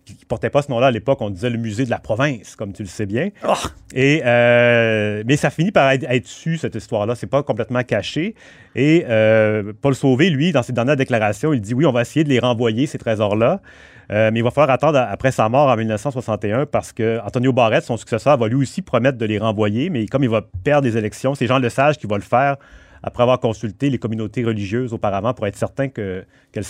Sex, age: male, 30-49